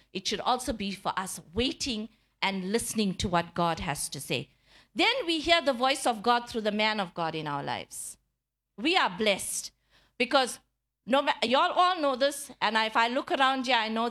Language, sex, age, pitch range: English, female, 50-69, 210-280 Hz